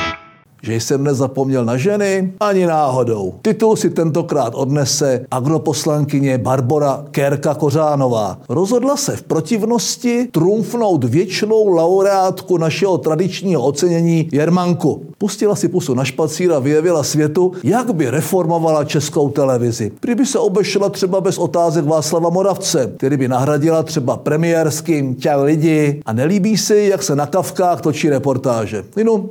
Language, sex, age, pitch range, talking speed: Czech, male, 50-69, 140-185 Hz, 130 wpm